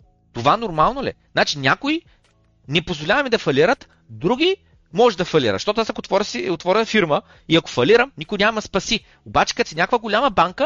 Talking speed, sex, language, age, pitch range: 170 wpm, male, Bulgarian, 30-49, 135-200 Hz